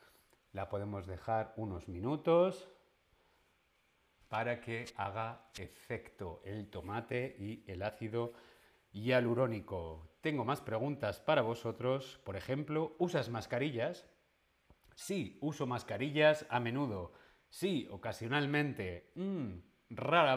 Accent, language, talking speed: Spanish, Spanish, 95 wpm